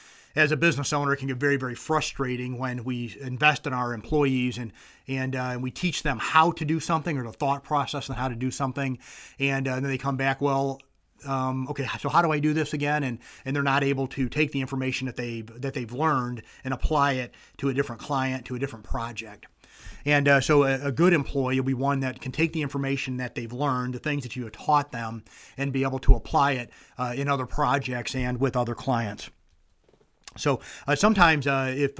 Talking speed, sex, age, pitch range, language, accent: 225 wpm, male, 30-49, 125-140 Hz, English, American